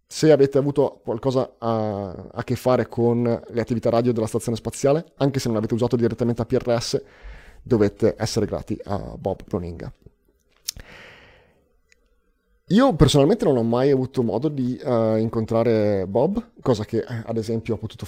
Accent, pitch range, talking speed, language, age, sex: native, 110-140 Hz, 155 wpm, Italian, 30-49, male